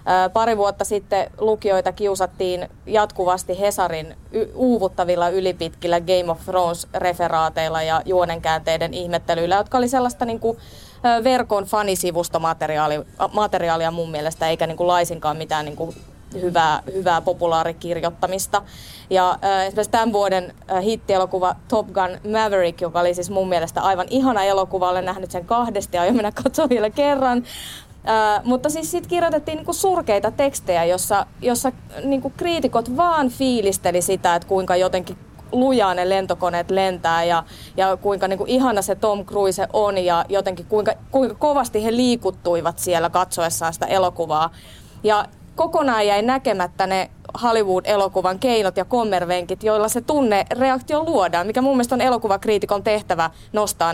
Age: 30-49